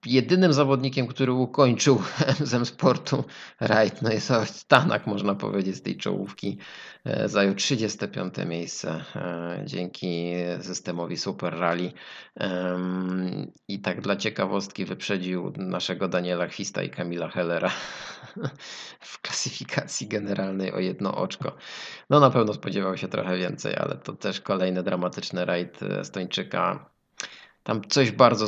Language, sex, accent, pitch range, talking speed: Polish, male, native, 95-120 Hz, 120 wpm